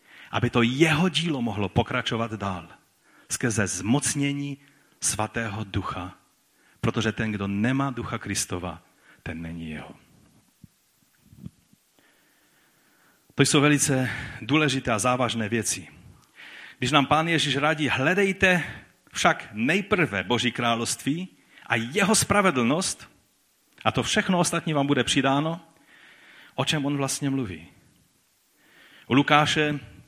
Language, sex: Czech, male